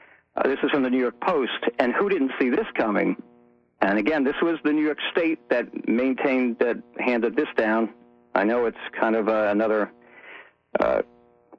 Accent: American